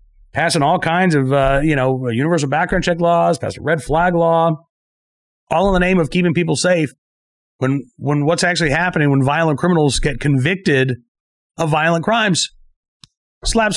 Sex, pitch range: male, 145-195 Hz